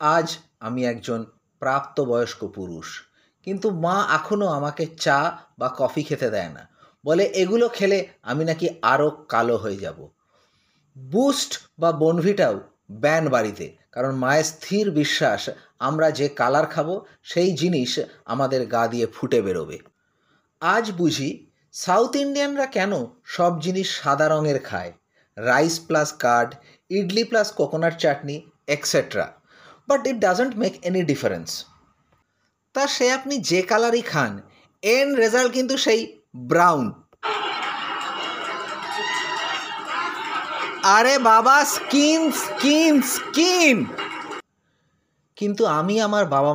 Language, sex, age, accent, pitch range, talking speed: Bengali, male, 30-49, native, 145-230 Hz, 95 wpm